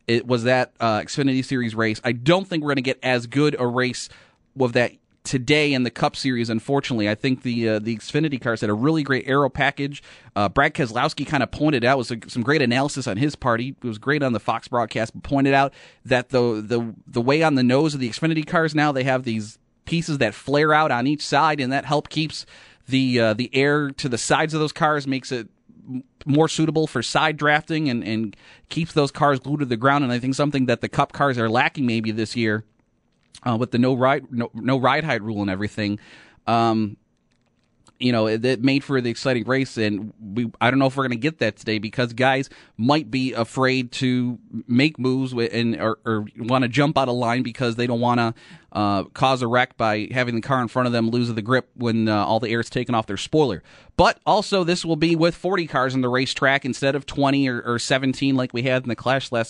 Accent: American